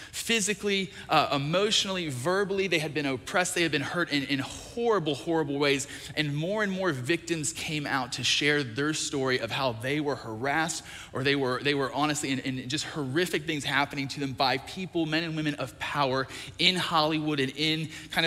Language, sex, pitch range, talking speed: English, male, 115-155 Hz, 195 wpm